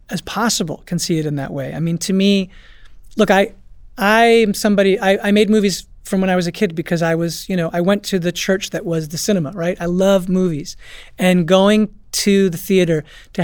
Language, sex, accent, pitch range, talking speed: English, male, American, 175-210 Hz, 225 wpm